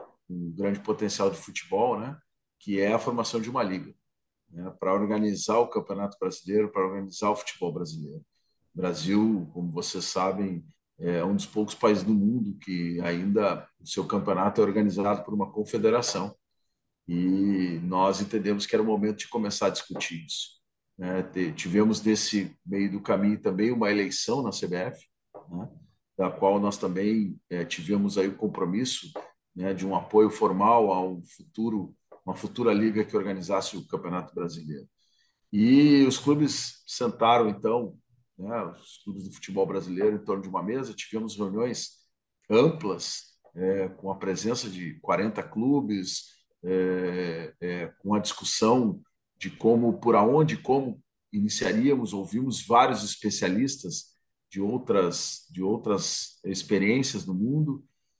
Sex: male